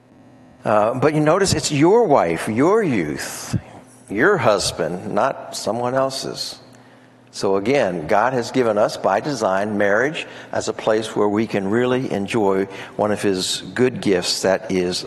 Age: 60-79